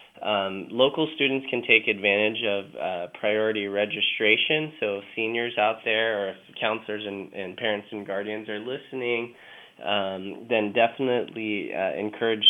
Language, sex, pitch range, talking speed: English, male, 100-115 Hz, 140 wpm